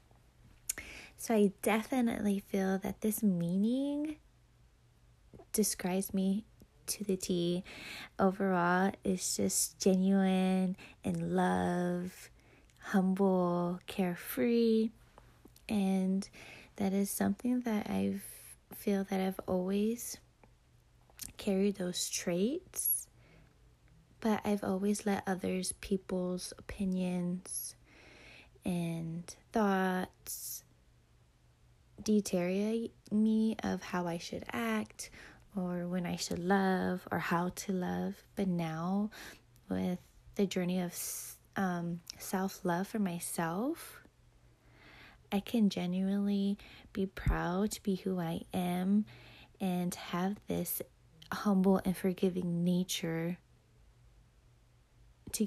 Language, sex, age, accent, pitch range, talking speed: English, female, 20-39, American, 180-205 Hz, 95 wpm